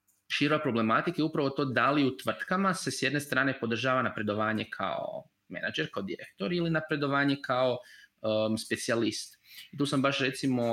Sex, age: male, 20-39